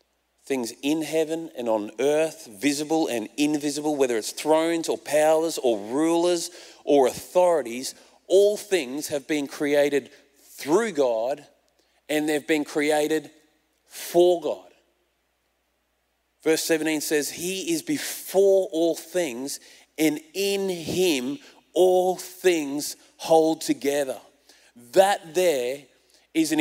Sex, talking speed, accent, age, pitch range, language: male, 115 wpm, Australian, 30-49, 150-190 Hz, English